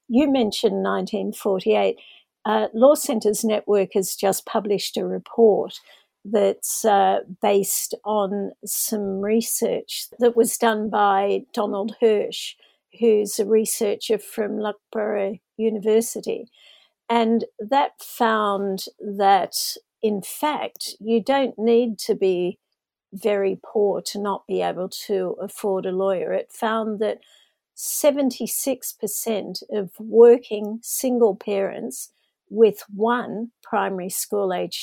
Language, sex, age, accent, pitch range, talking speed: English, female, 50-69, Australian, 200-230 Hz, 110 wpm